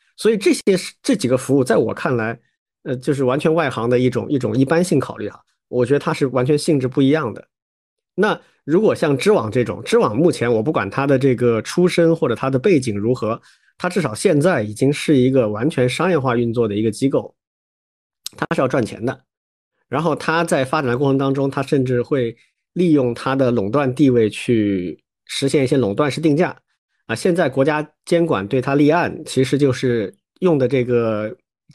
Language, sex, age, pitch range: Chinese, male, 50-69, 120-155 Hz